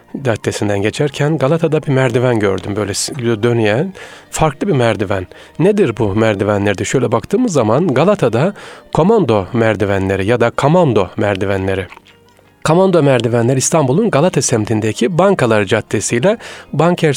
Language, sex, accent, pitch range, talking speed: Turkish, male, native, 110-155 Hz, 115 wpm